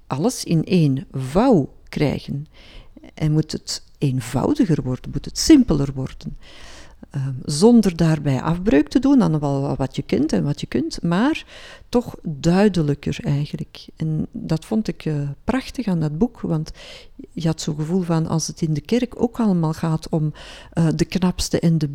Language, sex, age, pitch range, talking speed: Dutch, female, 50-69, 155-220 Hz, 165 wpm